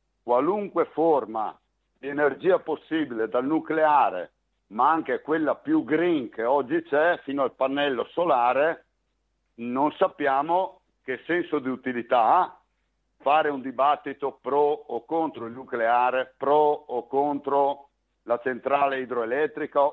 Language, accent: Italian, native